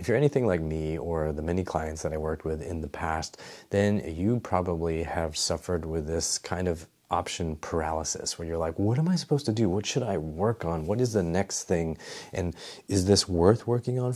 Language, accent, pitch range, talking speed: English, American, 80-100 Hz, 220 wpm